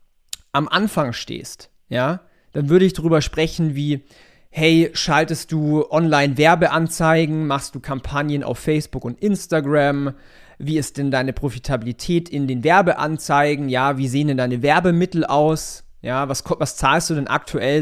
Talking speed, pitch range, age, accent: 150 wpm, 135-170 Hz, 30-49, German